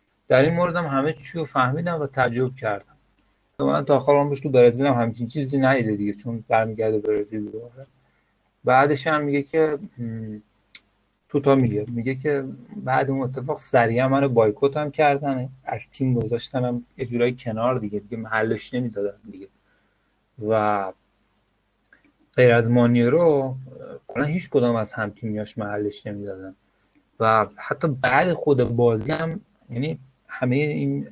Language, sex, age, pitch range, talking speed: Persian, male, 30-49, 110-135 Hz, 135 wpm